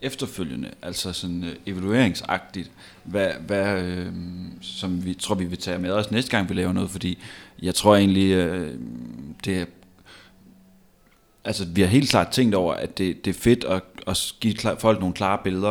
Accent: native